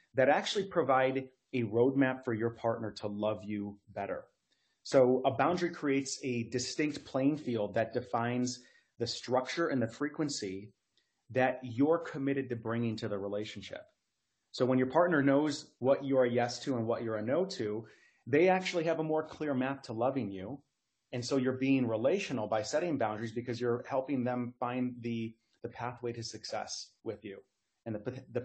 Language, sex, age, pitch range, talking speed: English, male, 30-49, 115-135 Hz, 175 wpm